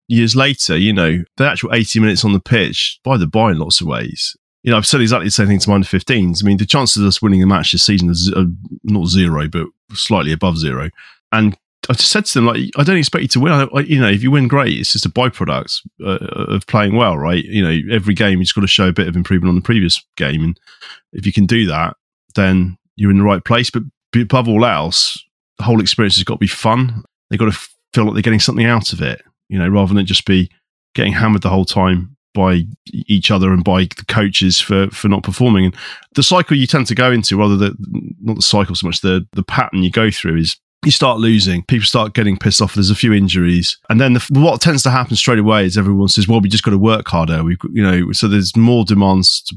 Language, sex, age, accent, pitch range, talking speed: English, male, 30-49, British, 95-115 Hz, 260 wpm